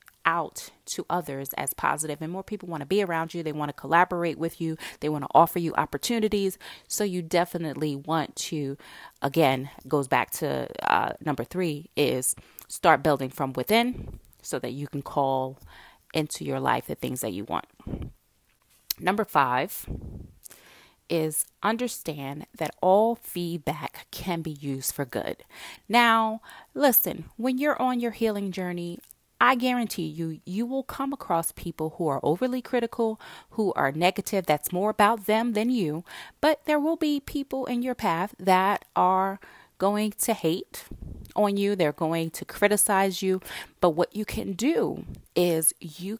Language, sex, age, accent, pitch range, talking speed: English, female, 30-49, American, 155-225 Hz, 160 wpm